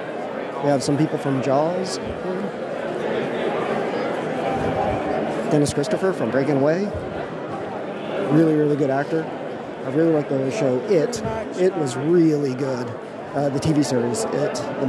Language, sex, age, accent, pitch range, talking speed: English, male, 40-59, American, 135-165 Hz, 125 wpm